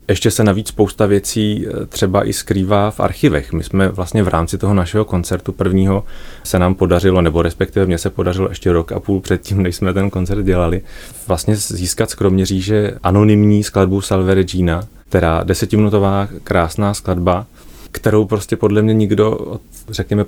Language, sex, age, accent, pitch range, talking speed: Czech, male, 30-49, native, 85-100 Hz, 165 wpm